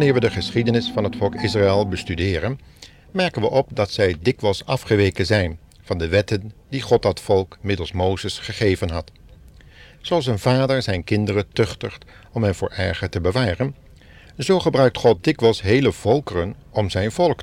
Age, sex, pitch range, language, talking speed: 50-69, male, 95-125 Hz, Dutch, 170 wpm